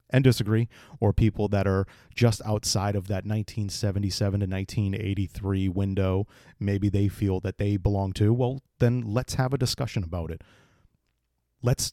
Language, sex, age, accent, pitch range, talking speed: English, male, 30-49, American, 95-110 Hz, 150 wpm